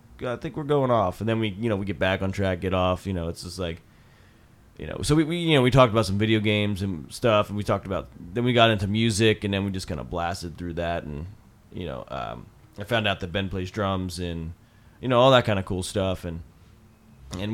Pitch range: 95-125 Hz